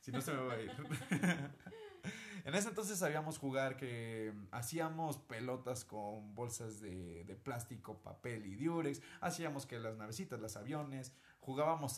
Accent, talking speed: Mexican, 150 wpm